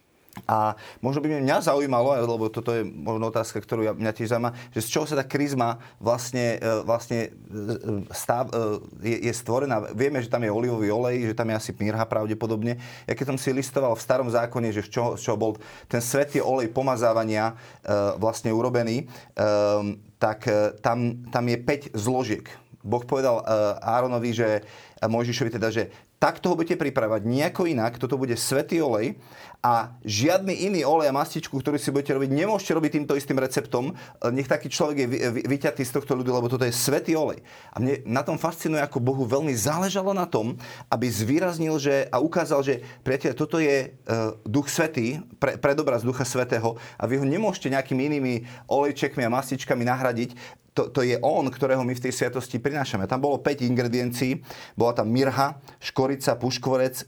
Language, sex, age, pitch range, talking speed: Slovak, male, 30-49, 115-140 Hz, 170 wpm